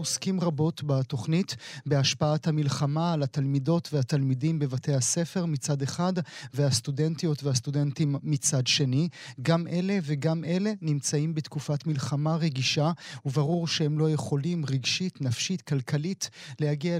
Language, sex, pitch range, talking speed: Hebrew, male, 140-165 Hz, 115 wpm